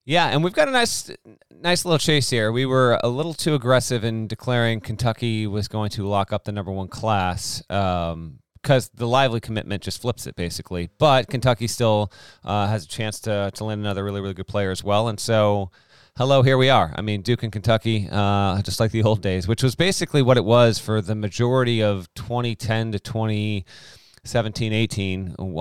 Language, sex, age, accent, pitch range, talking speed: English, male, 30-49, American, 100-125 Hz, 195 wpm